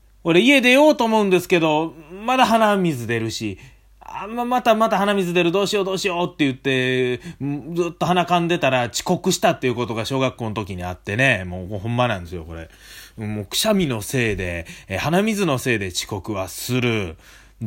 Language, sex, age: Japanese, male, 30-49